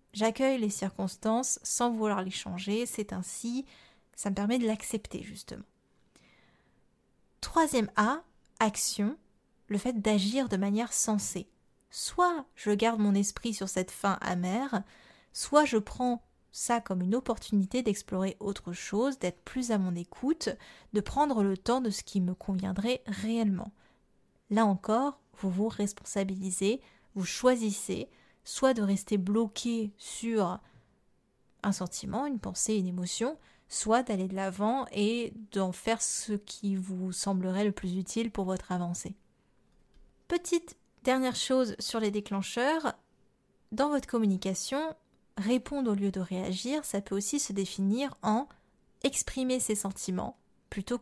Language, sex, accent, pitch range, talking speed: French, female, French, 195-240 Hz, 140 wpm